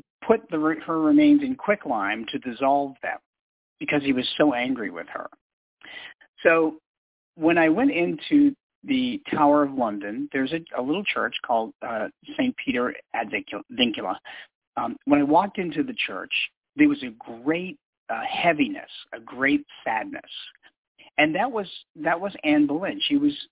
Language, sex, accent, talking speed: English, male, American, 155 wpm